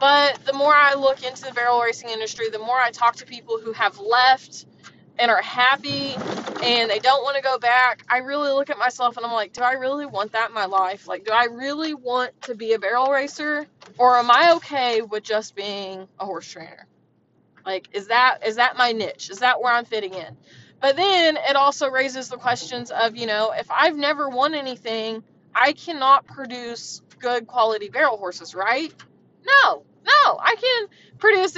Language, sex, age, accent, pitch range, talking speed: English, female, 20-39, American, 220-270 Hz, 200 wpm